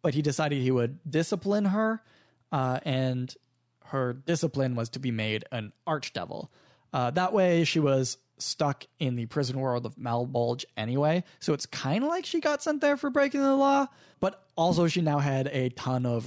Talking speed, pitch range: 185 wpm, 125-165 Hz